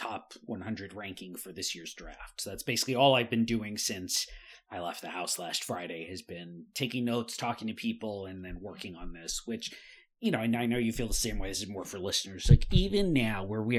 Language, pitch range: English, 110-145 Hz